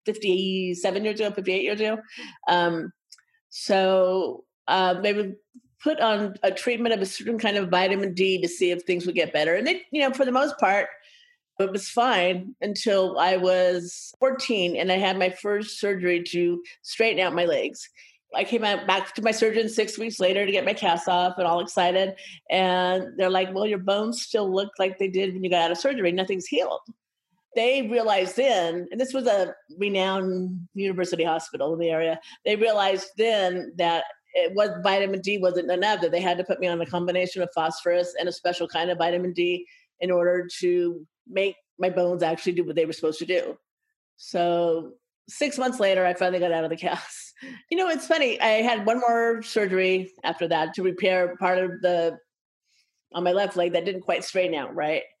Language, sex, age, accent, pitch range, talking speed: English, female, 40-59, American, 180-220 Hz, 200 wpm